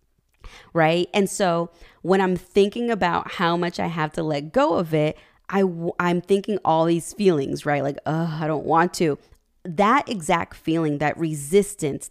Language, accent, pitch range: English, American, 150-195 Hz